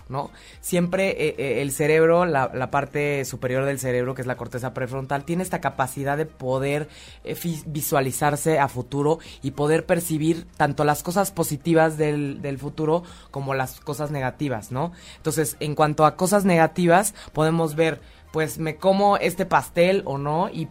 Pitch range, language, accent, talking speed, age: 140-175 Hz, Spanish, Mexican, 170 wpm, 20-39